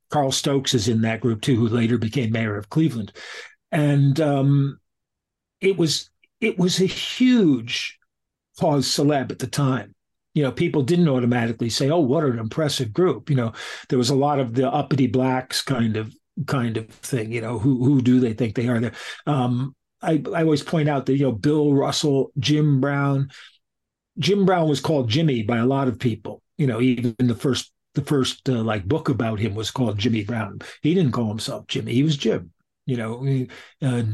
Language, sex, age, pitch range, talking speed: English, male, 50-69, 115-145 Hz, 200 wpm